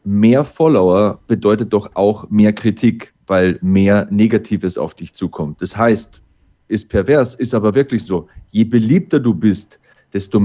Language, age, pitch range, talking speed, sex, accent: German, 40-59, 105-130 Hz, 150 wpm, male, German